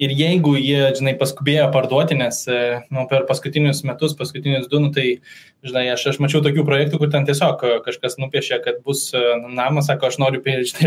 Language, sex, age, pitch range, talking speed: English, male, 20-39, 130-150 Hz, 180 wpm